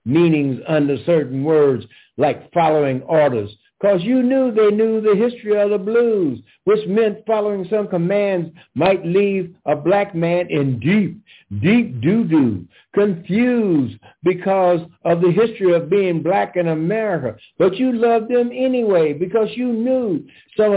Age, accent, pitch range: 60-79, American, 175-215 Hz